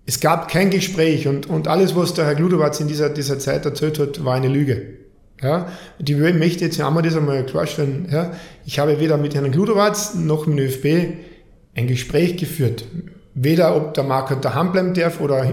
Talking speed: 210 wpm